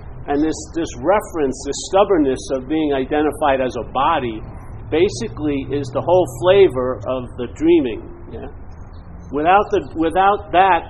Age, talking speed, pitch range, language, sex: 50-69, 140 wpm, 115-165 Hz, English, male